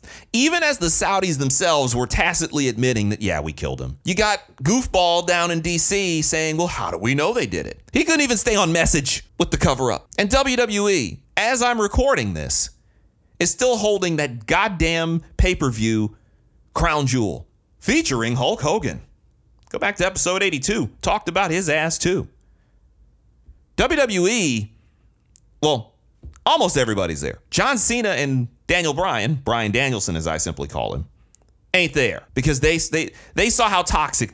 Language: English